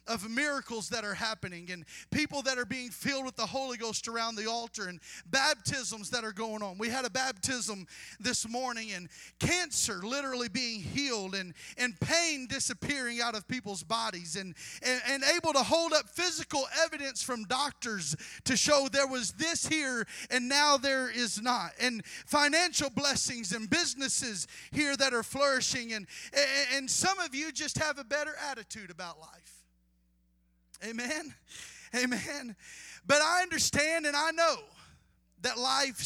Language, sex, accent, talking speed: English, male, American, 160 wpm